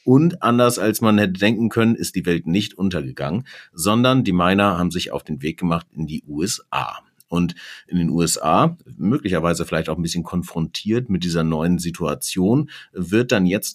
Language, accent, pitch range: German, German, 85-110 Hz